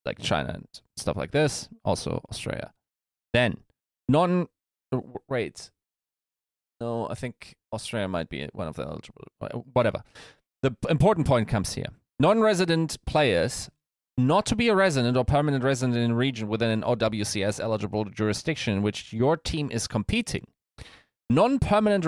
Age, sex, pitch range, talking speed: 30-49, male, 115-155 Hz, 140 wpm